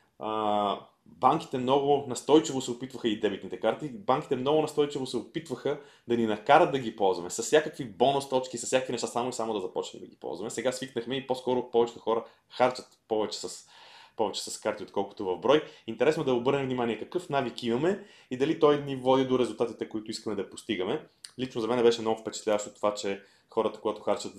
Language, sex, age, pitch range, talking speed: Bulgarian, male, 20-39, 105-130 Hz, 195 wpm